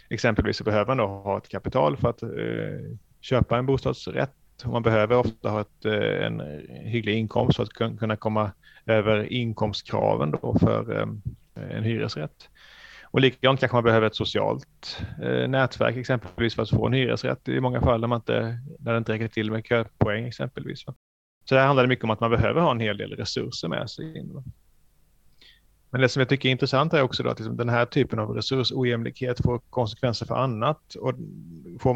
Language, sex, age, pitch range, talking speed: Swedish, male, 30-49, 110-125 Hz, 190 wpm